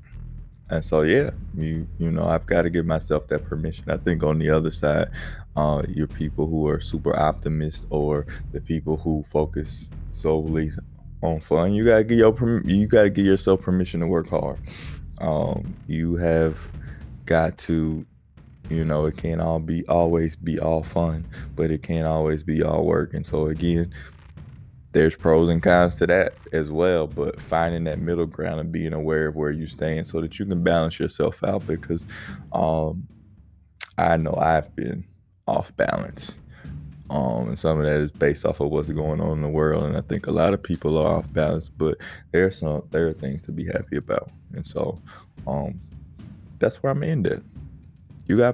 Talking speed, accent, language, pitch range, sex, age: 190 wpm, American, English, 75-85 Hz, male, 20-39